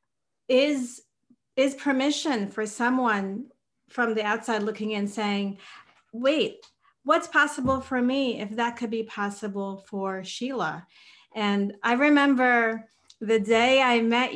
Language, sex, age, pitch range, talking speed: English, female, 40-59, 205-245 Hz, 125 wpm